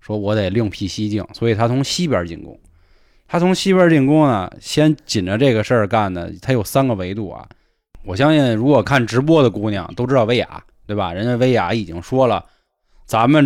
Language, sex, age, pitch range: Chinese, male, 20-39, 95-130 Hz